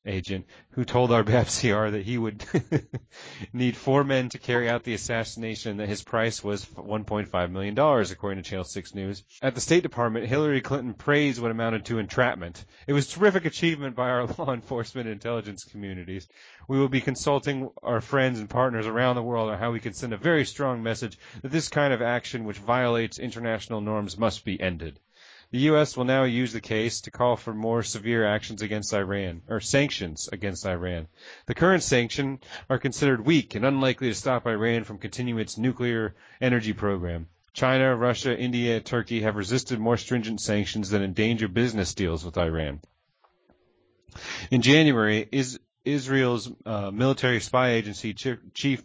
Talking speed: 175 wpm